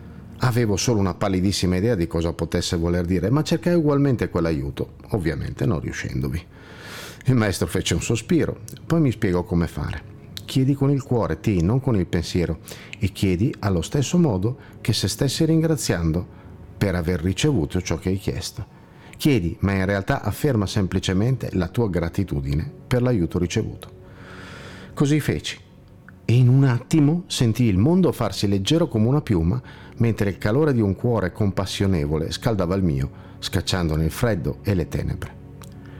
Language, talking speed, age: Italian, 155 wpm, 50-69